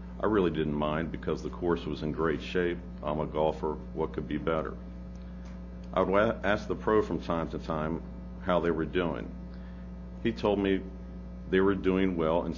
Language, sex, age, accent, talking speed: English, male, 50-69, American, 185 wpm